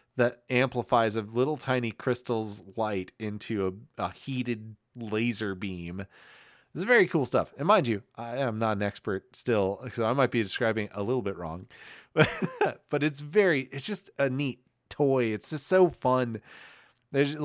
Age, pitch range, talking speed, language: 30-49, 105-130 Hz, 170 wpm, English